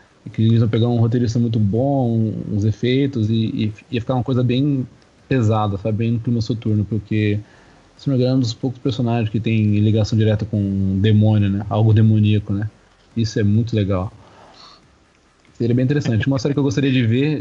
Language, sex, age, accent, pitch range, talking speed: Portuguese, male, 20-39, Brazilian, 110-130 Hz, 185 wpm